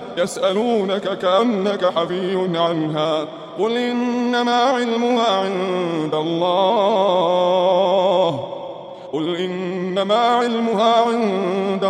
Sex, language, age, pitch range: male, Indonesian, 20-39, 170-235 Hz